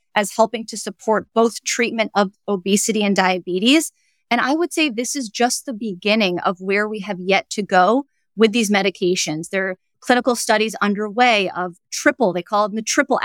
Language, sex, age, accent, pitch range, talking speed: English, female, 30-49, American, 195-250 Hz, 185 wpm